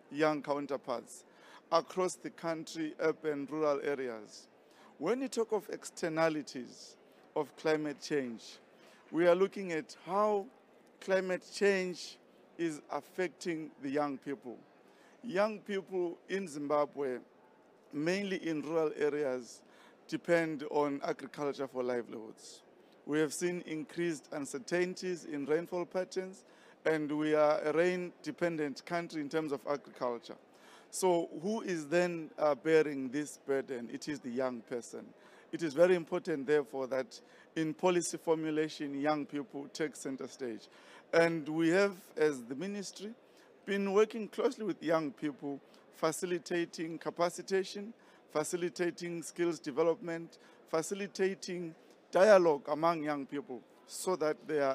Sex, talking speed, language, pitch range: male, 120 wpm, English, 145-180 Hz